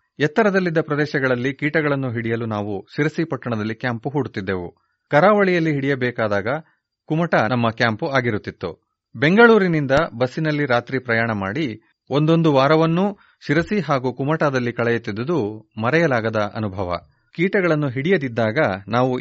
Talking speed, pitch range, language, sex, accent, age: 95 wpm, 115-155 Hz, Kannada, male, native, 30-49